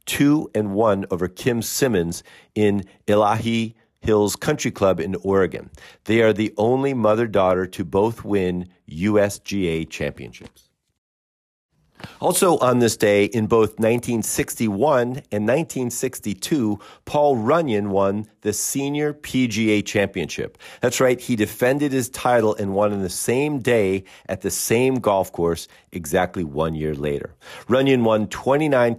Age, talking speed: 50-69, 130 wpm